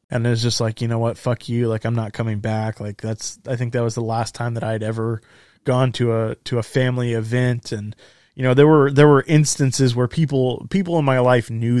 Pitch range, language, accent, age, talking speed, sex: 115-125 Hz, English, American, 20-39, 250 wpm, male